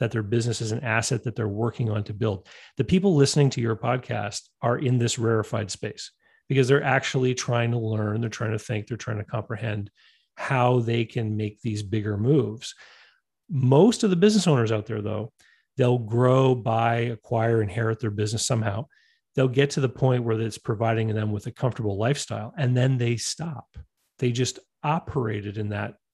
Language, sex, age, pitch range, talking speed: English, male, 40-59, 110-130 Hz, 190 wpm